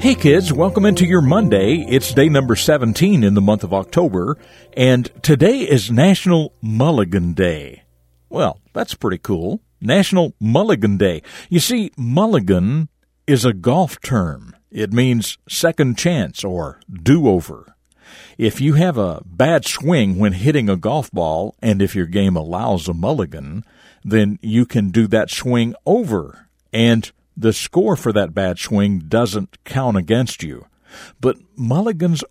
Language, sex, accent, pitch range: English, male, American, 100-150 Hz